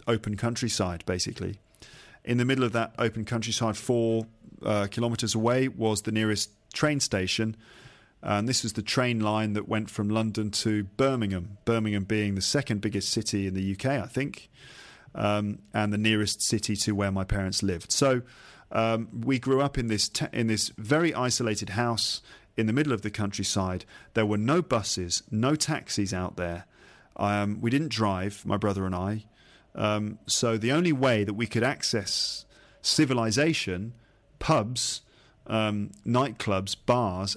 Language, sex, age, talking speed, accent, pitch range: English, male, 40-59, 160 wpm, British, 100-120 Hz